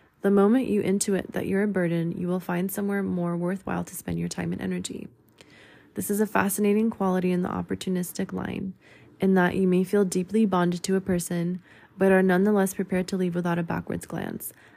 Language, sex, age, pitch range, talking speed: English, female, 20-39, 175-200 Hz, 200 wpm